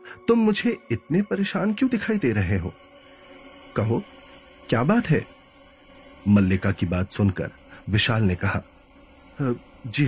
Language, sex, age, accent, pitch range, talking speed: Hindi, male, 30-49, native, 100-150 Hz, 130 wpm